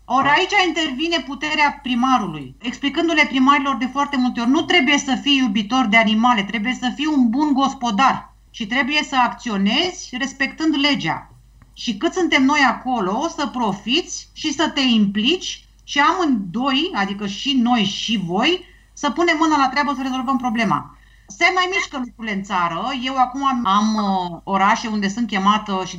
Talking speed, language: 165 wpm, Romanian